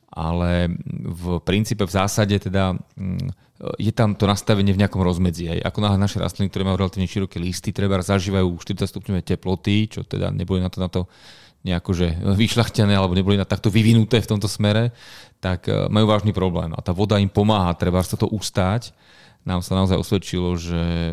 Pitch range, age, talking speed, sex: 90-100 Hz, 30-49, 180 wpm, male